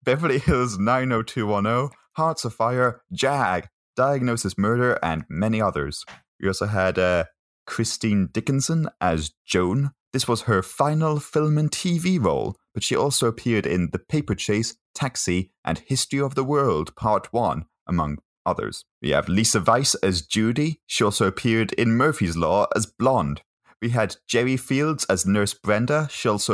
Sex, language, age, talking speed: male, English, 30-49, 155 wpm